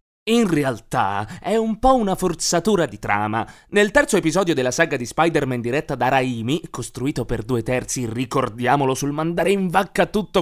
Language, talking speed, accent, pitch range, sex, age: Italian, 165 wpm, native, 135-220 Hz, male, 30-49